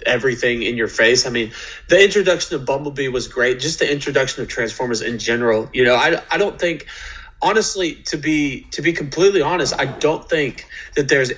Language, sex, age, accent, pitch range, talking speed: English, male, 20-39, American, 120-150 Hz, 195 wpm